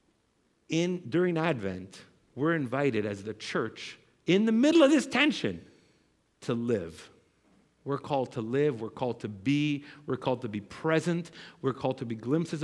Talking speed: 155 wpm